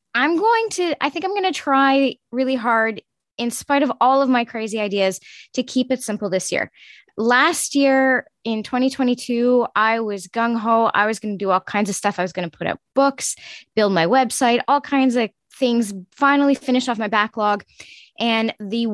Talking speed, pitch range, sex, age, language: 200 wpm, 205-255 Hz, female, 10-29, English